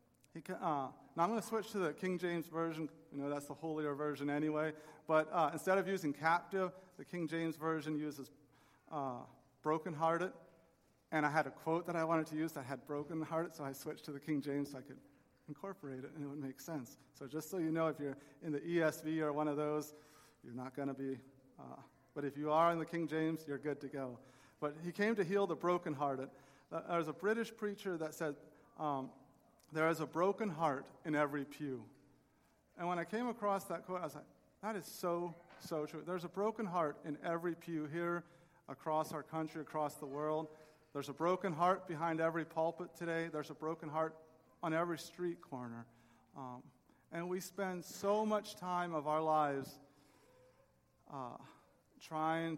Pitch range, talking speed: 145-170 Hz, 195 wpm